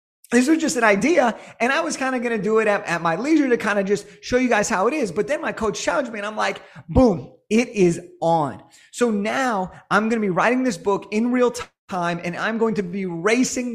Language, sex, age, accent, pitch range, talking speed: English, male, 30-49, American, 185-245 Hz, 260 wpm